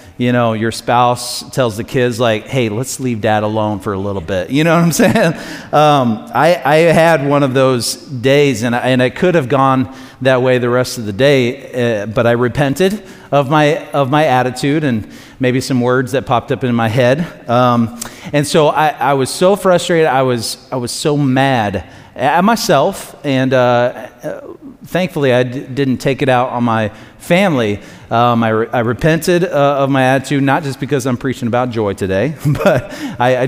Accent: American